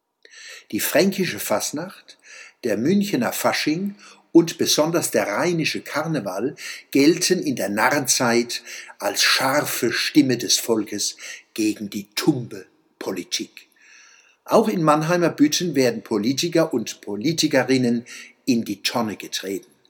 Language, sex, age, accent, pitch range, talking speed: German, male, 60-79, German, 115-190 Hz, 105 wpm